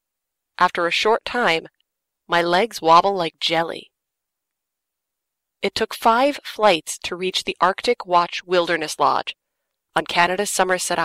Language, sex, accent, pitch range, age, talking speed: English, female, American, 170-205 Hz, 30-49, 125 wpm